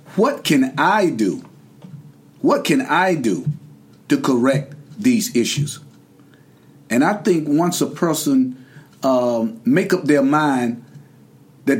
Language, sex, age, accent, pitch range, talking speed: English, male, 50-69, American, 140-200 Hz, 120 wpm